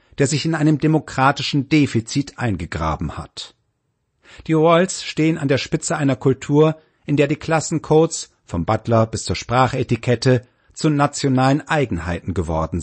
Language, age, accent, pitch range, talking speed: German, 50-69, German, 120-150 Hz, 135 wpm